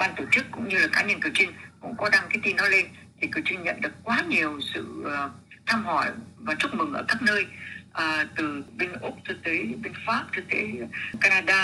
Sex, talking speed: female, 225 wpm